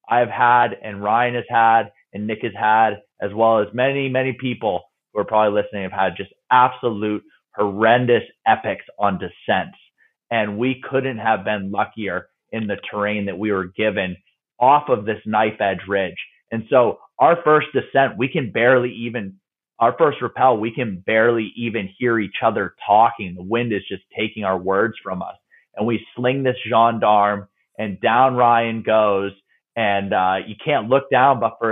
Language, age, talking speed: English, 30-49, 175 wpm